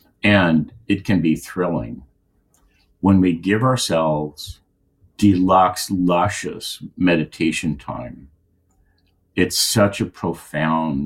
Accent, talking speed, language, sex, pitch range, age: American, 90 wpm, English, male, 75-95 Hz, 60-79